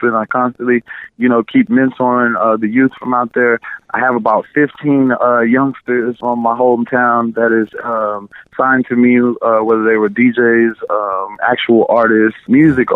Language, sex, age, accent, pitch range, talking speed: English, male, 20-39, American, 110-125 Hz, 170 wpm